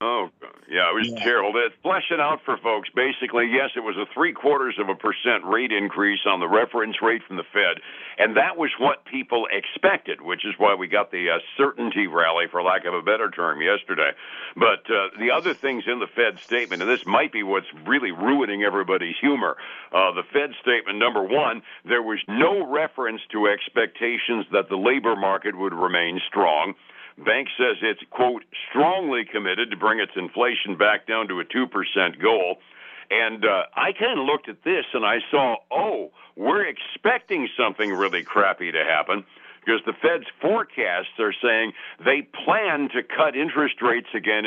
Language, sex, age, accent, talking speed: English, male, 60-79, American, 185 wpm